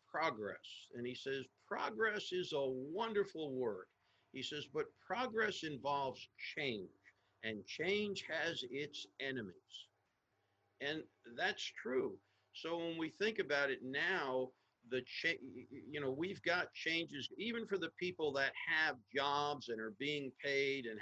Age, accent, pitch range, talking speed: 50-69, American, 120-170 Hz, 135 wpm